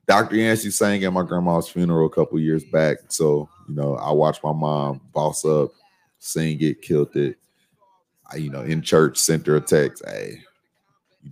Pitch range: 80-95 Hz